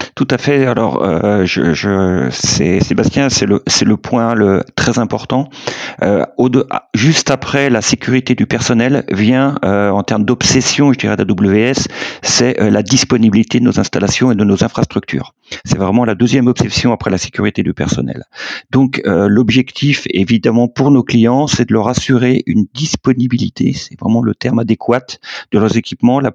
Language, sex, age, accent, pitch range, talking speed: French, male, 40-59, French, 110-135 Hz, 180 wpm